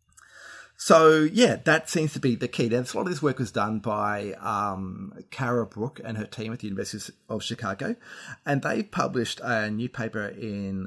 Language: English